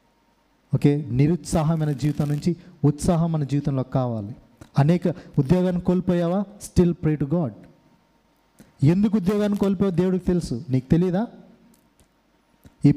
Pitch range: 125-170 Hz